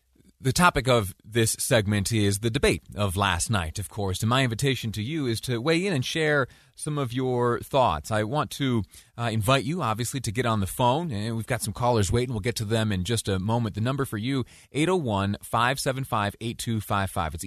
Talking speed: 205 wpm